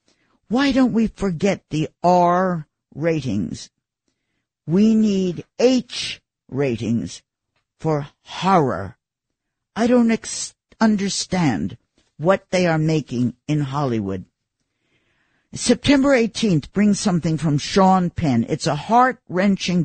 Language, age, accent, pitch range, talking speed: English, 50-69, American, 140-195 Hz, 95 wpm